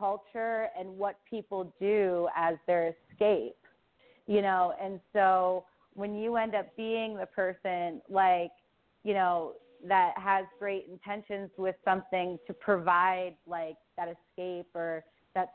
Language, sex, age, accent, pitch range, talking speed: English, female, 30-49, American, 165-200 Hz, 135 wpm